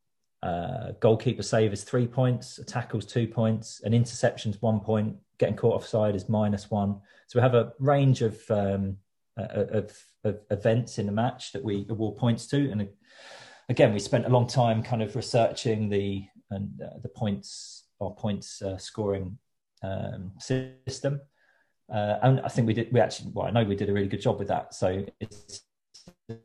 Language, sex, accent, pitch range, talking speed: English, male, British, 100-120 Hz, 185 wpm